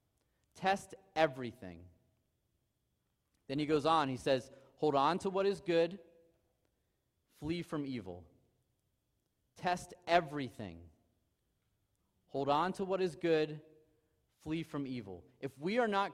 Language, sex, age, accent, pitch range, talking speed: English, male, 30-49, American, 130-175 Hz, 120 wpm